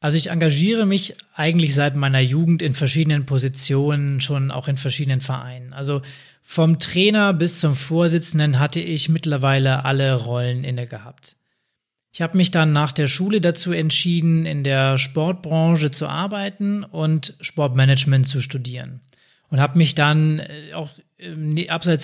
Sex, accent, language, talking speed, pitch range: male, German, German, 145 wpm, 135-165 Hz